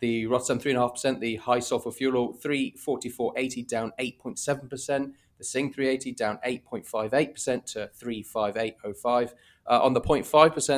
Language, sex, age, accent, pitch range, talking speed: English, male, 30-49, British, 110-135 Hz, 105 wpm